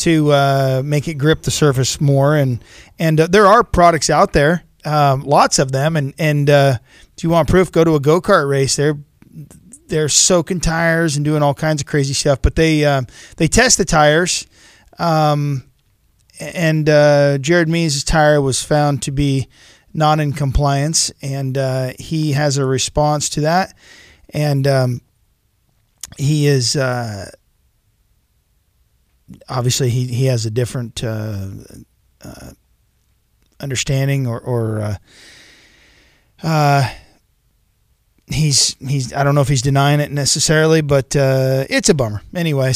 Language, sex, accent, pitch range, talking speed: English, male, American, 135-165 Hz, 150 wpm